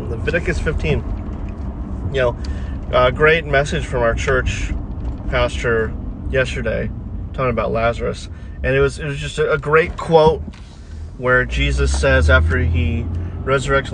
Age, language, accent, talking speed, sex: 30-49, English, American, 130 wpm, male